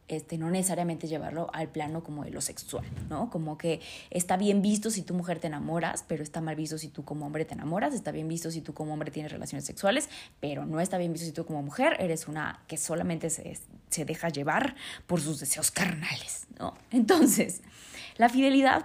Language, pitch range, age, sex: Spanish, 160-225 Hz, 20-39, female